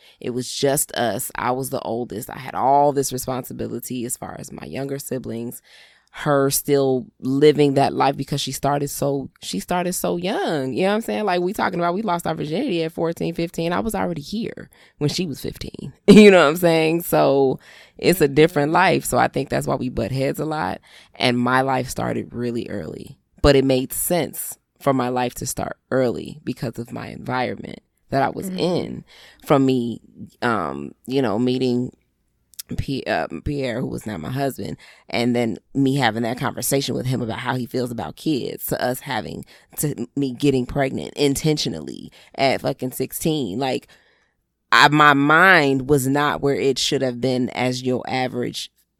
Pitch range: 125-145 Hz